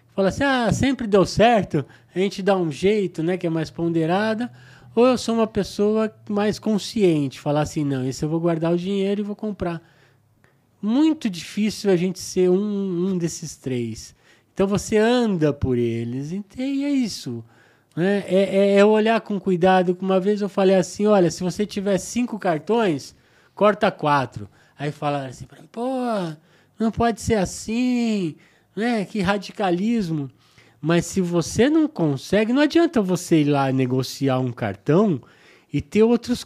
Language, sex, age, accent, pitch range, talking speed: Portuguese, male, 20-39, Brazilian, 160-220 Hz, 165 wpm